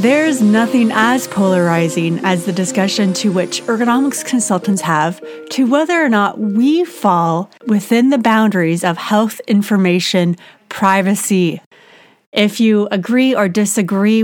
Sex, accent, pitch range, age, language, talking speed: female, American, 180-220 Hz, 30-49, English, 125 wpm